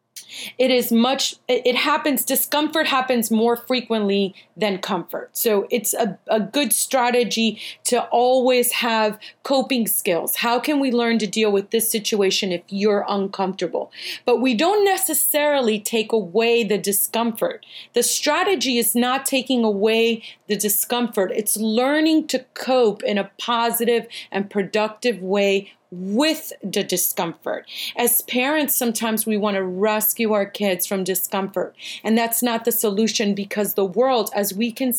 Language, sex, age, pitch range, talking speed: English, female, 30-49, 200-240 Hz, 145 wpm